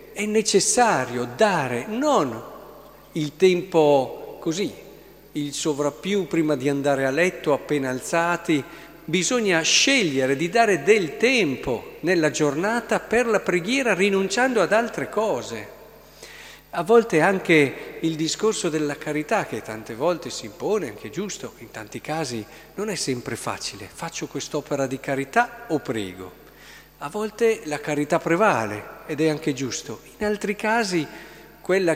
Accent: native